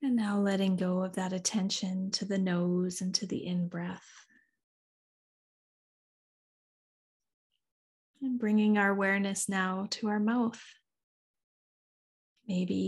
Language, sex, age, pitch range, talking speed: English, female, 30-49, 190-220 Hz, 105 wpm